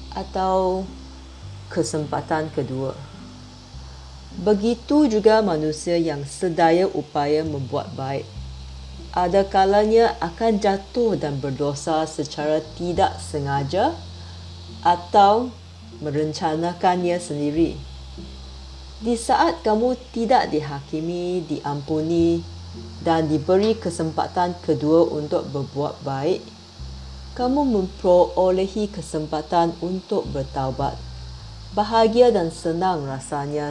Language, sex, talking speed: Indonesian, female, 80 wpm